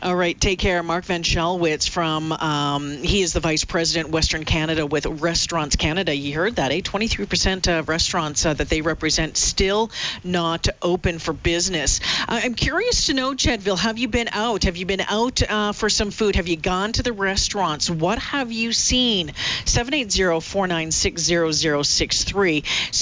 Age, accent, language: 40-59, American, English